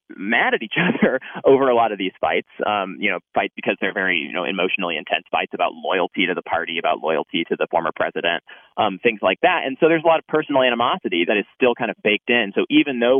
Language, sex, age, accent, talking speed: English, male, 30-49, American, 250 wpm